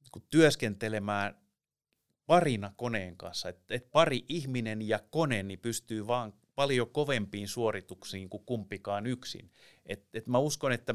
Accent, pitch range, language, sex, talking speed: native, 105-125 Hz, Finnish, male, 105 wpm